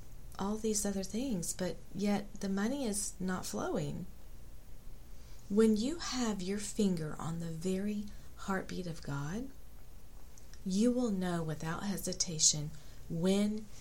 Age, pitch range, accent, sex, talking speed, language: 40-59, 155-200 Hz, American, female, 120 wpm, English